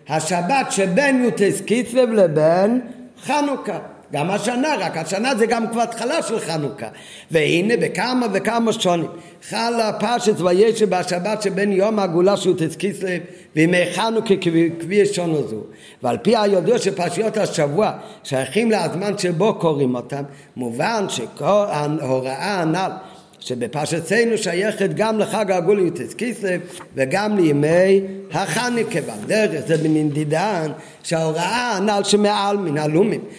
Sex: male